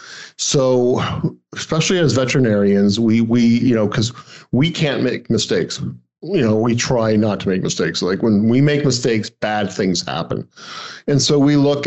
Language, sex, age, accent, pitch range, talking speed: English, male, 50-69, American, 115-135 Hz, 165 wpm